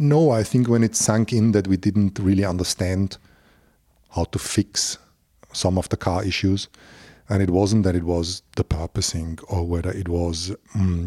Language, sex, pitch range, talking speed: English, male, 90-105 Hz, 180 wpm